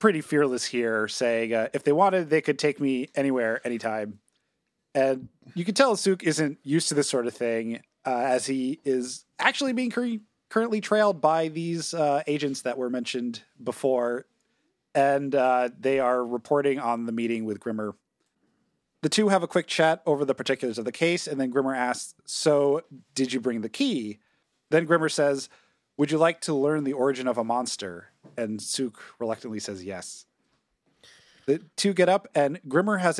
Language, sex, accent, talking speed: English, male, American, 180 wpm